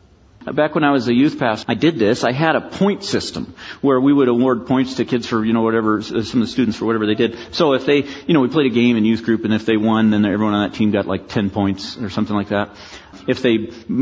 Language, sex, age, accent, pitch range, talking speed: English, male, 40-59, American, 110-150 Hz, 280 wpm